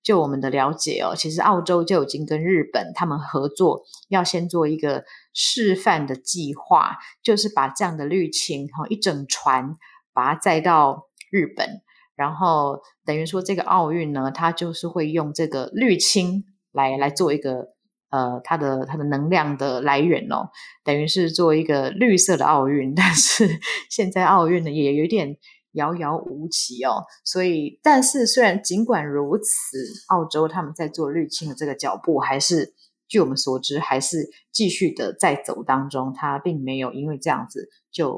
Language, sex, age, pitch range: Chinese, female, 30-49, 145-200 Hz